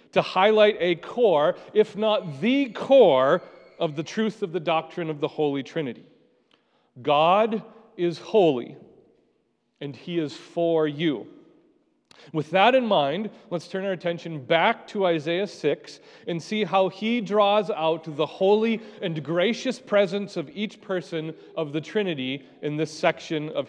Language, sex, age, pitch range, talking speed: English, male, 40-59, 160-225 Hz, 150 wpm